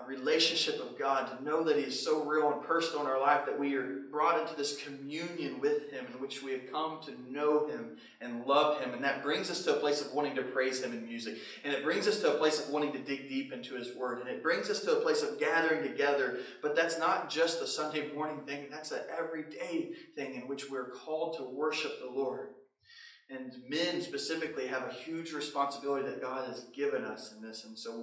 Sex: male